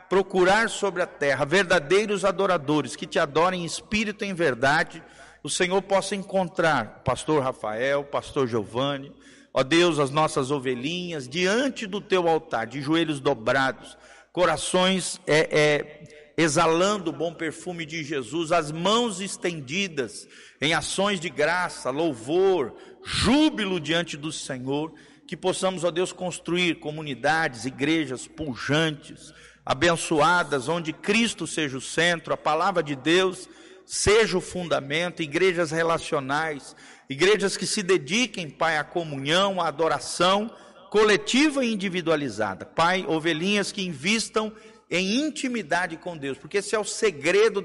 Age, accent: 50-69, Brazilian